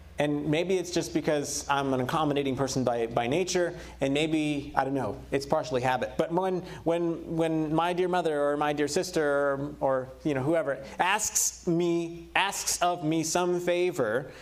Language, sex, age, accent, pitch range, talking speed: English, male, 30-49, American, 140-210 Hz, 180 wpm